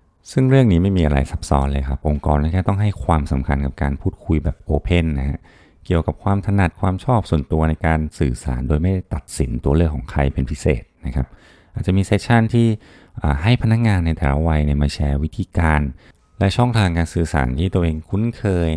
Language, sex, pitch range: Thai, male, 75-95 Hz